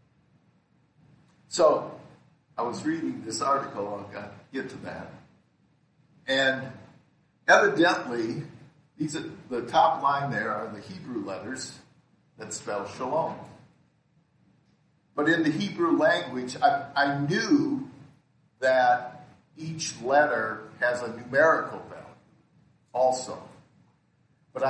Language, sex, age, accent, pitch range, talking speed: English, male, 50-69, American, 125-165 Hz, 100 wpm